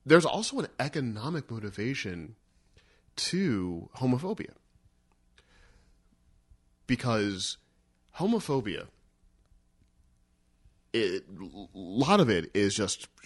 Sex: male